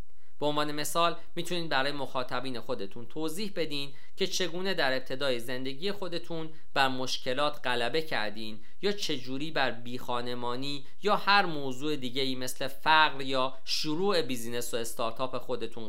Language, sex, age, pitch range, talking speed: Persian, male, 50-69, 125-155 Hz, 135 wpm